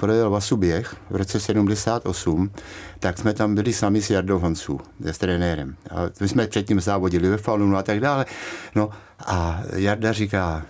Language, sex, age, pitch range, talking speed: Czech, male, 60-79, 95-115 Hz, 165 wpm